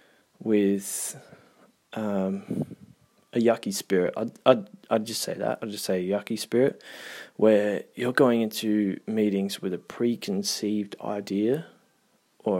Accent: Australian